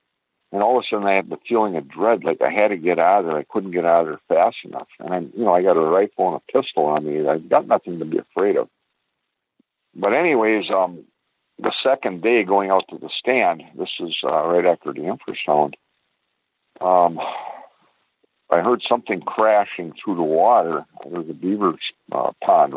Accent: American